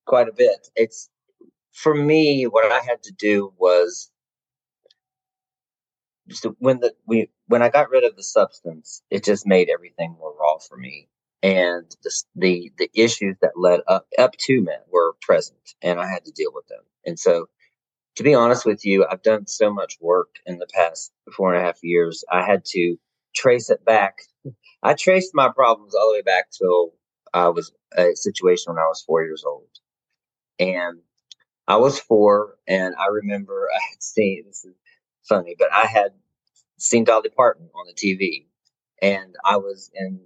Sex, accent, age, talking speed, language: male, American, 40-59, 180 wpm, English